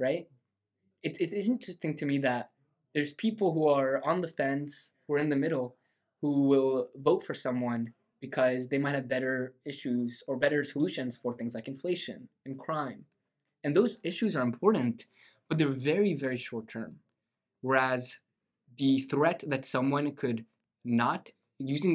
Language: English